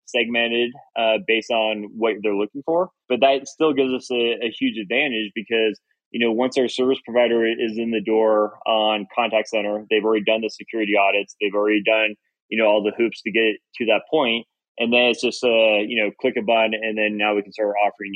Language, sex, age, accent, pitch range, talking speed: English, male, 20-39, American, 110-125 Hz, 220 wpm